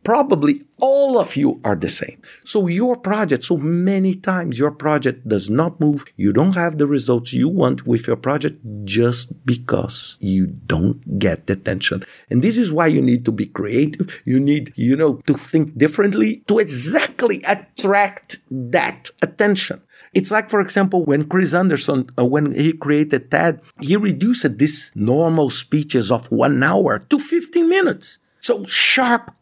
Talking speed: 165 wpm